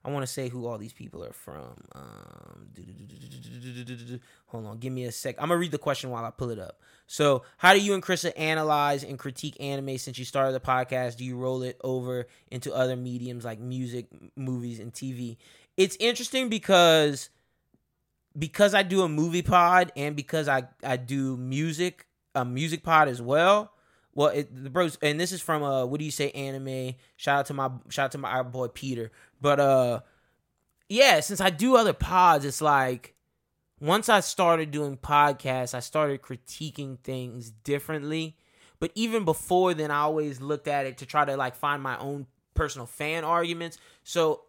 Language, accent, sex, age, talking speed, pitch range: English, American, male, 20-39, 185 wpm, 130-160 Hz